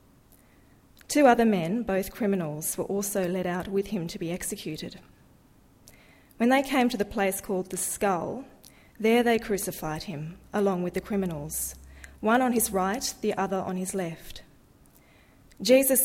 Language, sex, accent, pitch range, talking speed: English, female, Australian, 185-225 Hz, 155 wpm